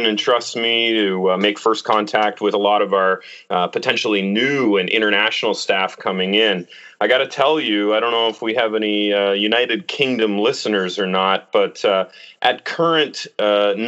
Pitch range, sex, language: 95-115 Hz, male, English